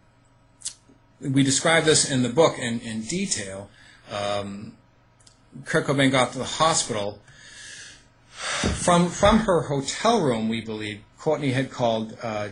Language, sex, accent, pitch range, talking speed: English, male, American, 110-140 Hz, 130 wpm